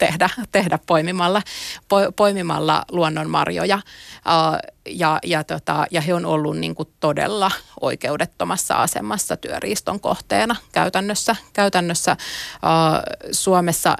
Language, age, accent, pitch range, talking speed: Finnish, 30-49, native, 160-205 Hz, 90 wpm